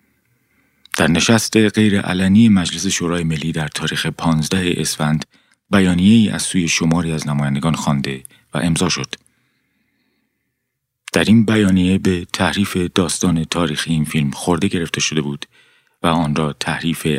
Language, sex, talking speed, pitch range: Persian, male, 135 wpm, 75-95 Hz